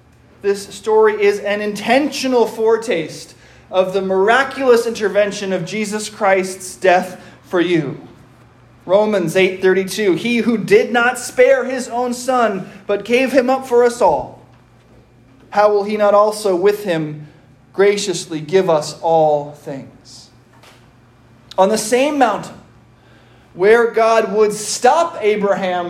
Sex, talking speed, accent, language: male, 125 wpm, American, English